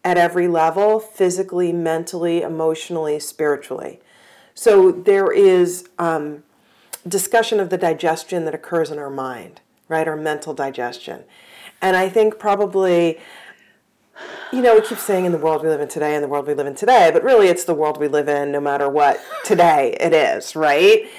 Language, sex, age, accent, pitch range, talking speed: English, female, 40-59, American, 160-225 Hz, 175 wpm